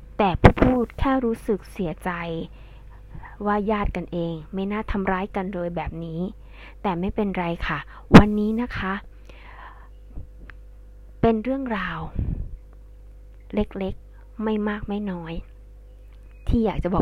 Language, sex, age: Thai, female, 20-39